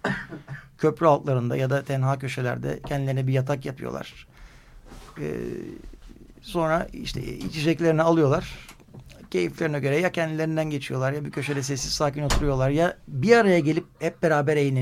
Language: Turkish